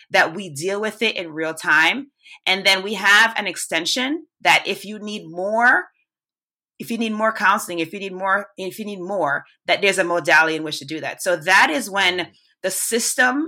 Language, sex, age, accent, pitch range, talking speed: English, female, 30-49, American, 175-215 Hz, 210 wpm